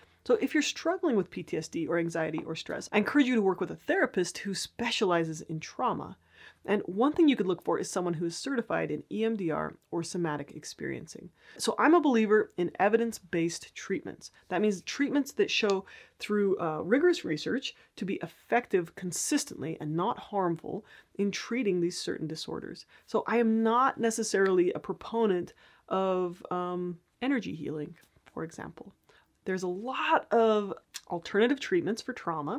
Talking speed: 160 wpm